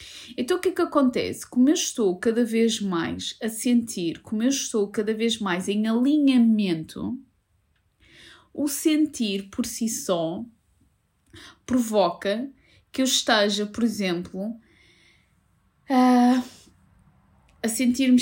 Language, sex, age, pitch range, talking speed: Portuguese, female, 20-39, 220-265 Hz, 120 wpm